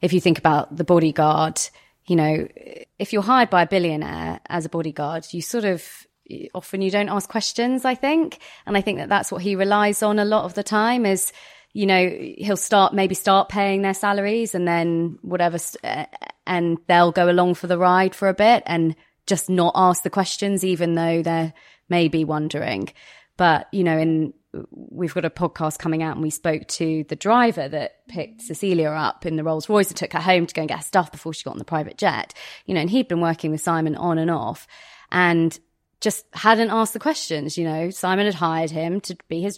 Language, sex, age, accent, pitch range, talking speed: English, female, 20-39, British, 165-200 Hz, 215 wpm